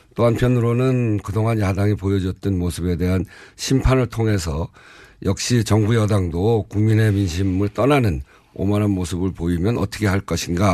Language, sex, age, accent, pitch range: Korean, male, 50-69, native, 85-105 Hz